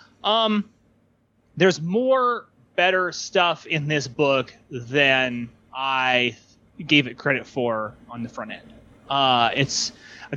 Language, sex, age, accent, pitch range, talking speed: English, male, 30-49, American, 135-195 Hz, 120 wpm